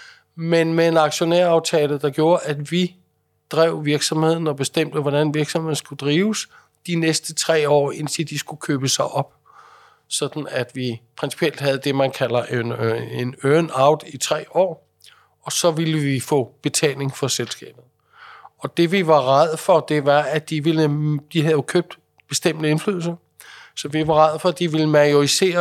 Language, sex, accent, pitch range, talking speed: Danish, male, native, 140-165 Hz, 170 wpm